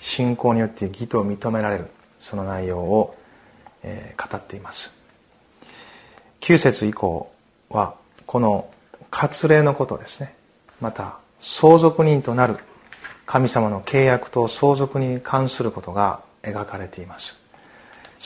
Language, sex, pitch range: Japanese, male, 105-135 Hz